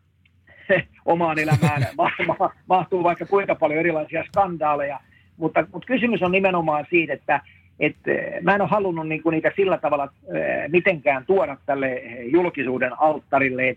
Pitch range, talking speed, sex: 140-170 Hz, 125 wpm, male